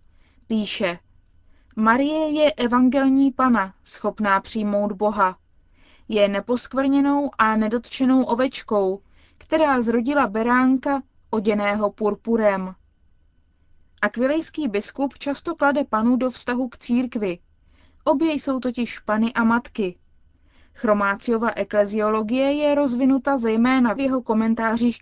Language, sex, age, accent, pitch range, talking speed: Czech, female, 20-39, native, 195-255 Hz, 100 wpm